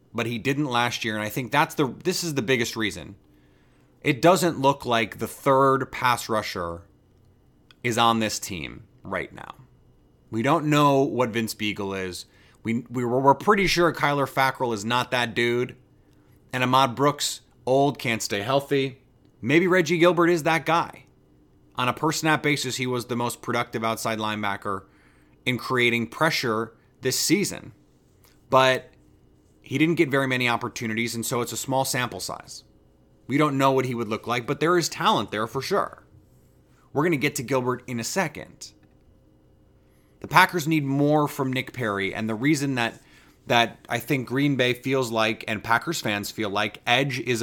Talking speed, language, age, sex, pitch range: 175 wpm, English, 30-49, male, 115-140 Hz